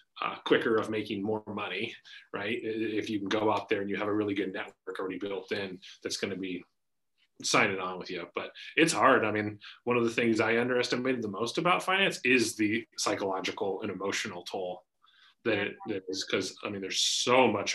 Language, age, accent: English, 30-49, American